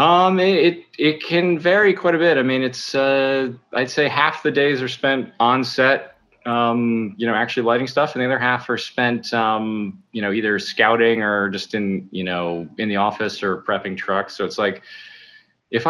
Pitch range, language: 95-120 Hz, English